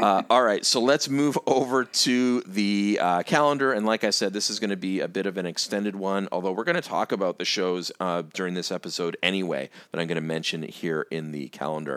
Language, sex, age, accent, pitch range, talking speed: English, male, 40-59, American, 90-110 Hz, 240 wpm